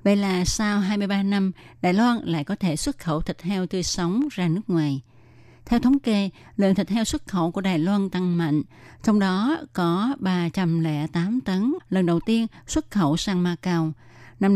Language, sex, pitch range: Vietnamese, female, 160-205 Hz